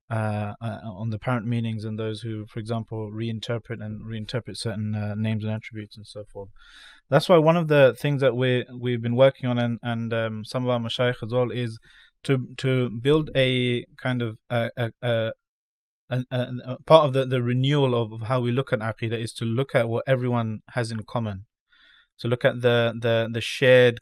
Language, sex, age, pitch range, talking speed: English, male, 20-39, 110-125 Hz, 205 wpm